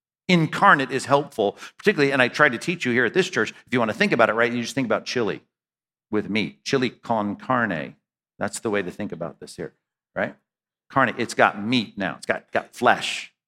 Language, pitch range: English, 125-160 Hz